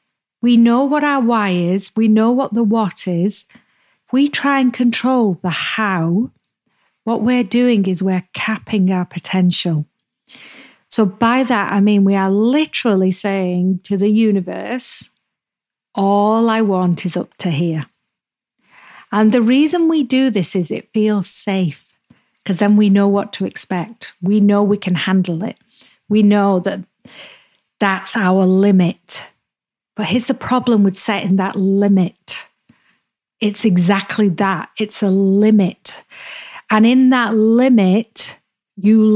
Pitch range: 195-235 Hz